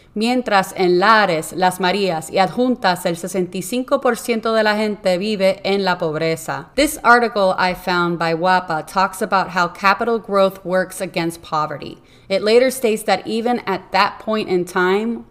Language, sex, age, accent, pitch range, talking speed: Spanish, female, 30-49, American, 170-210 Hz, 155 wpm